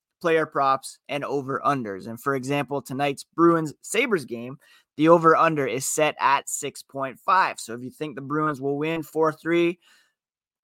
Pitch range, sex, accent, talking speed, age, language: 135-175 Hz, male, American, 140 wpm, 20-39, English